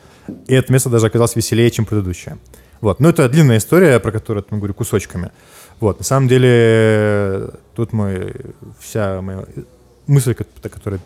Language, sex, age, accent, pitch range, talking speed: Russian, male, 20-39, native, 100-125 Hz, 165 wpm